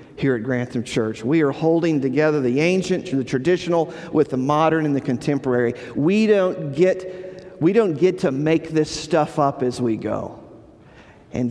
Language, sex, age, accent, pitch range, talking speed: English, male, 50-69, American, 145-185 Hz, 175 wpm